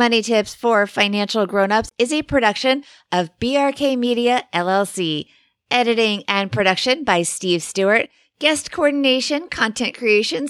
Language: English